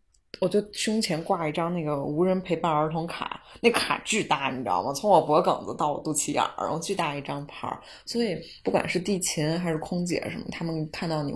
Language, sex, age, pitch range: Chinese, female, 20-39, 155-195 Hz